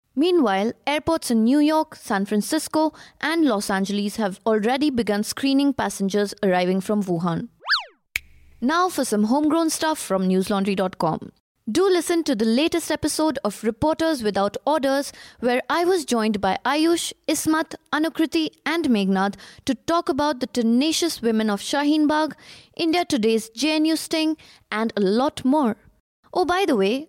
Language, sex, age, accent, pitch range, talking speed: English, female, 20-39, Indian, 215-315 Hz, 145 wpm